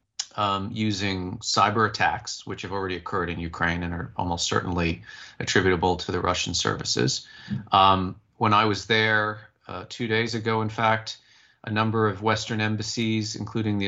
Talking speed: 160 wpm